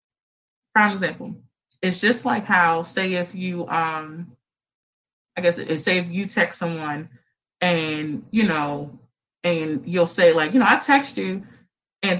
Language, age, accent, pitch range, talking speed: English, 20-39, American, 170-250 Hz, 155 wpm